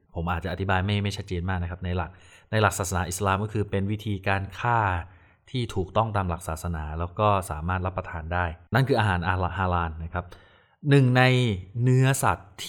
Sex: male